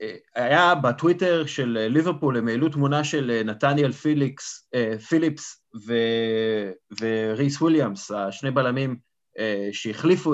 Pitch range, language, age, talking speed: 125-165 Hz, Hebrew, 30-49, 100 wpm